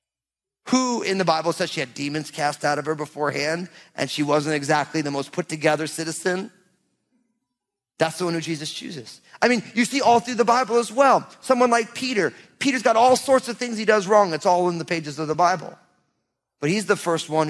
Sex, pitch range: male, 150-230 Hz